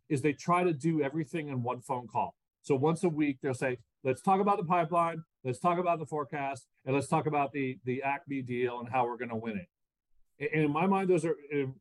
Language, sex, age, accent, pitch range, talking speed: English, male, 40-59, American, 130-165 Hz, 240 wpm